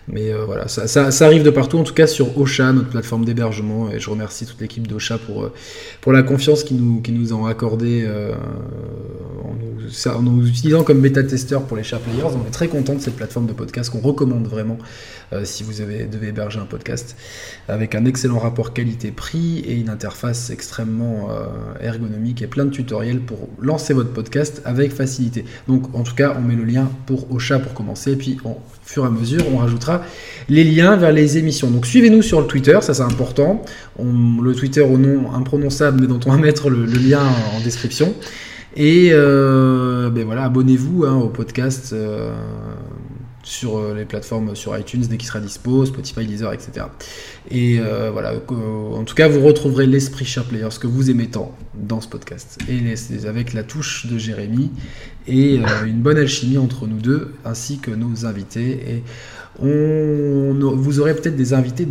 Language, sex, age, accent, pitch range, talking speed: French, male, 20-39, French, 115-135 Hz, 195 wpm